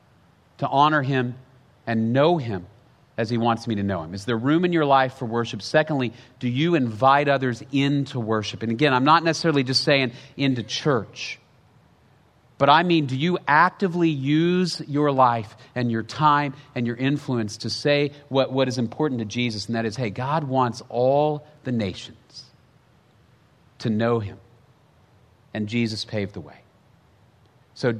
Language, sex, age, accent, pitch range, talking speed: English, male, 40-59, American, 120-155 Hz, 165 wpm